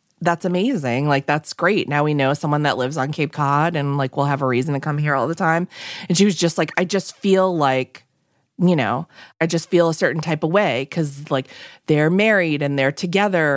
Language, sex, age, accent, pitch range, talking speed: English, female, 20-39, American, 140-180 Hz, 230 wpm